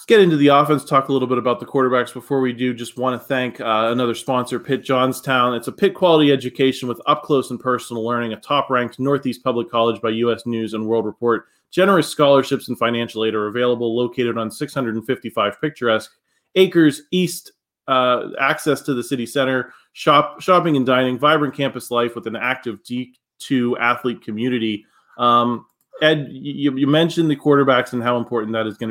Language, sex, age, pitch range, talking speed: English, male, 30-49, 120-140 Hz, 185 wpm